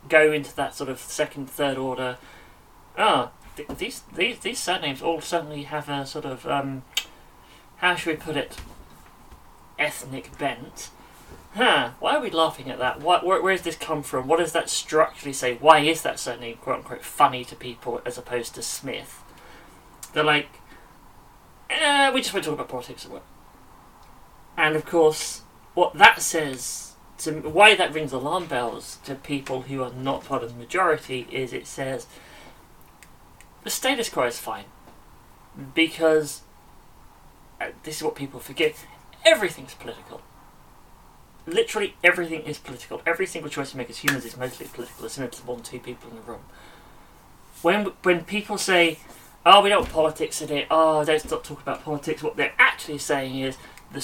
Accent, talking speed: British, 170 wpm